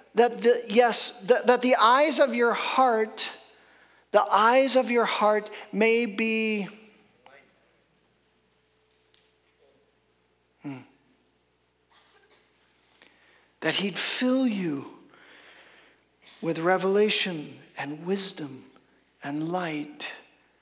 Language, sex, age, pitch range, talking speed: English, male, 50-69, 155-220 Hz, 75 wpm